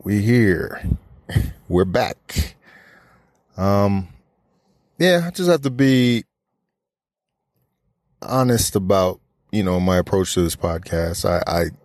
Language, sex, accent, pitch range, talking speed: English, male, American, 85-110 Hz, 110 wpm